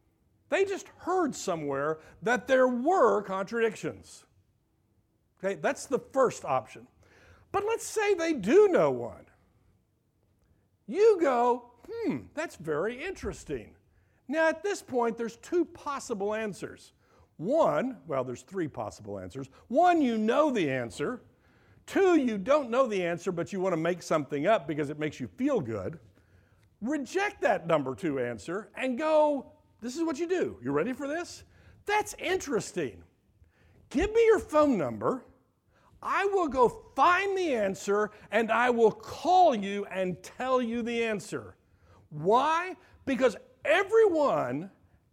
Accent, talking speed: American, 140 wpm